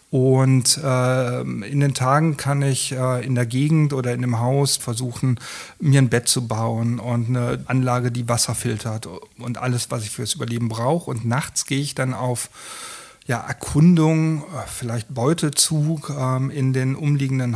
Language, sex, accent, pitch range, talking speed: German, male, German, 125-145 Hz, 165 wpm